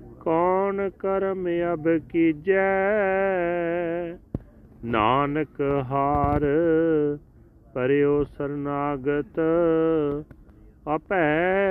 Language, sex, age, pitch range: Punjabi, male, 40-59, 145-190 Hz